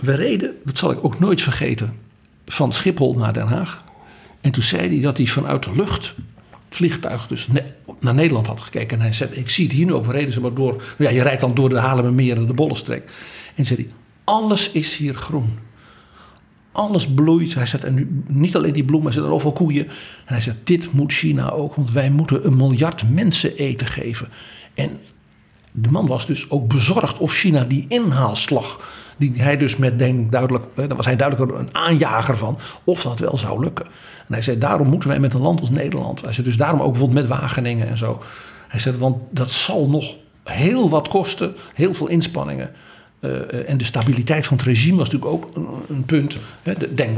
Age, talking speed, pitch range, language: 60-79, 210 wpm, 125-155 Hz, Dutch